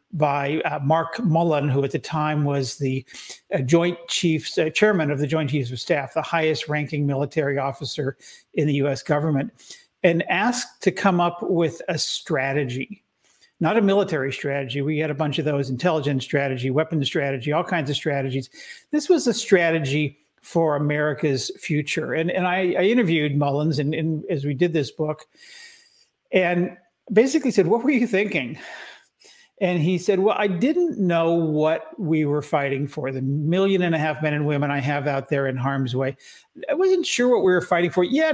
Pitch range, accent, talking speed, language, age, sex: 145-180 Hz, American, 185 wpm, English, 50-69, male